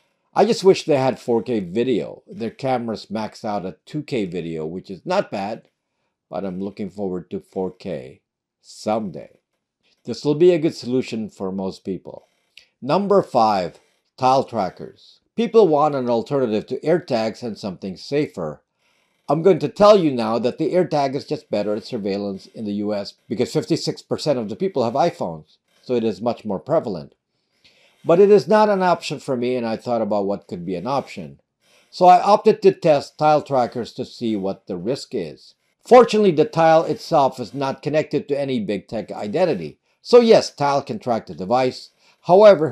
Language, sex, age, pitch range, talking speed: English, male, 50-69, 105-155 Hz, 180 wpm